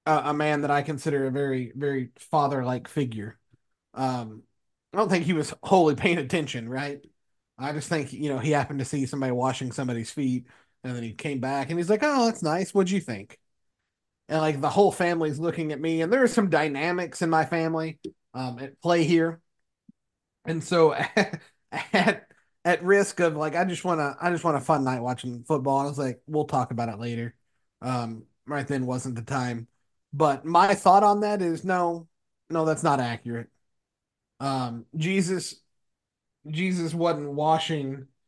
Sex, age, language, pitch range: male, 30-49, English, 125-165 Hz